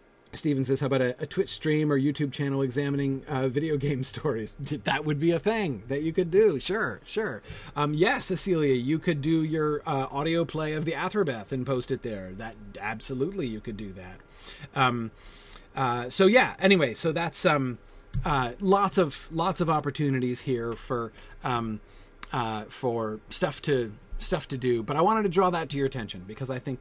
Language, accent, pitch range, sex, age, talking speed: English, American, 115-155 Hz, male, 30-49, 195 wpm